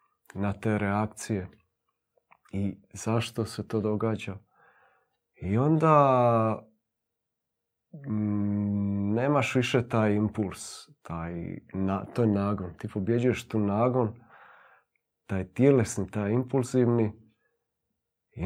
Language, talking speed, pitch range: Croatian, 95 wpm, 100-120 Hz